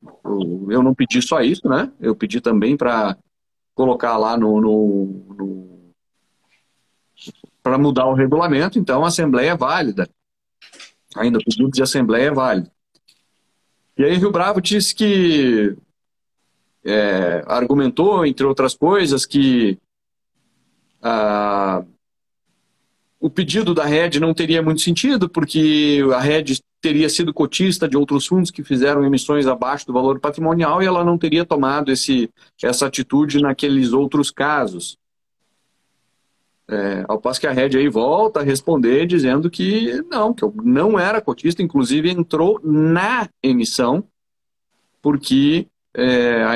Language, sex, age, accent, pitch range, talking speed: Portuguese, male, 40-59, Brazilian, 120-165 Hz, 135 wpm